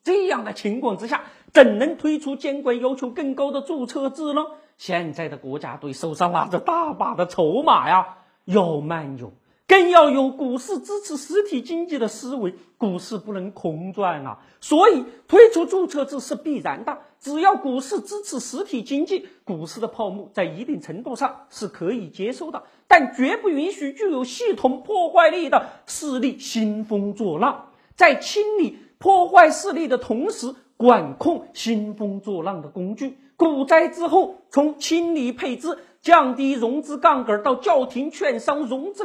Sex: male